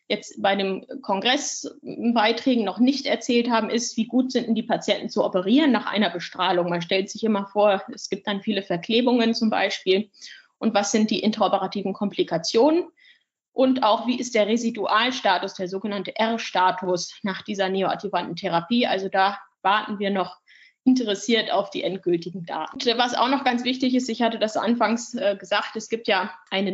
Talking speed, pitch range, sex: 175 wpm, 190-230 Hz, female